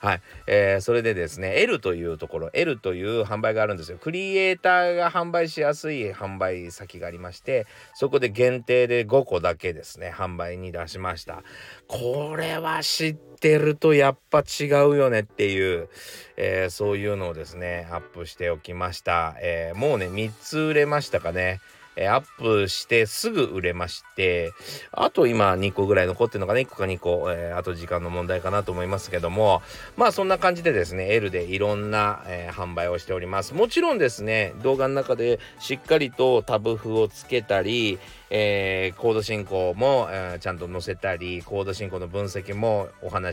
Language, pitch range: Japanese, 90-140 Hz